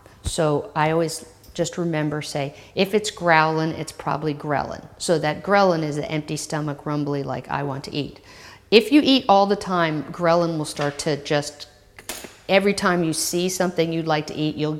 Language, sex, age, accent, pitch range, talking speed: English, female, 50-69, American, 150-180 Hz, 185 wpm